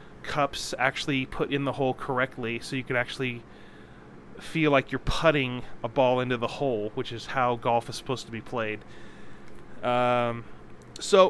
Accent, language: American, English